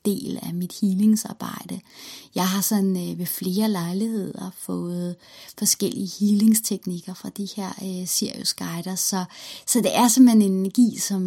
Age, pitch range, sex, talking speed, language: 30-49, 180-220 Hz, female, 150 wpm, German